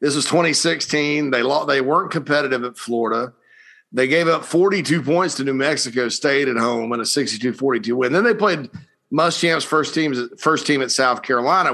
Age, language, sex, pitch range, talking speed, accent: 40-59, English, male, 130-160 Hz, 180 wpm, American